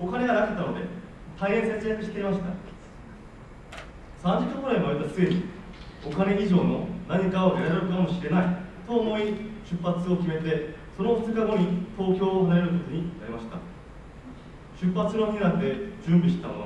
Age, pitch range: 30-49, 170-205 Hz